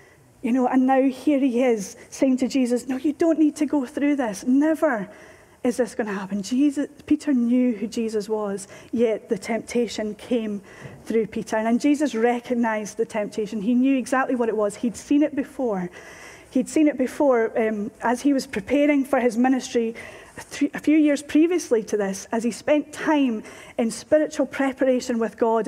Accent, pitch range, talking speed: British, 220-265 Hz, 180 wpm